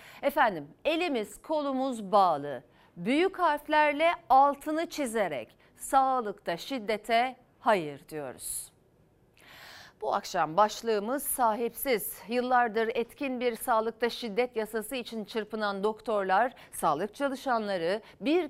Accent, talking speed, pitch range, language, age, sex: native, 90 wpm, 205-290 Hz, Turkish, 40-59, female